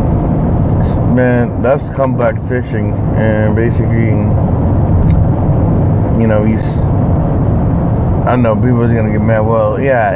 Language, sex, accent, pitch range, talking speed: English, male, American, 105-120 Hz, 100 wpm